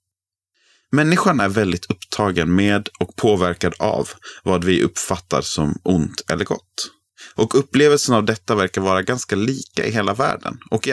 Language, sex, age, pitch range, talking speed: Swedish, male, 30-49, 95-115 Hz, 155 wpm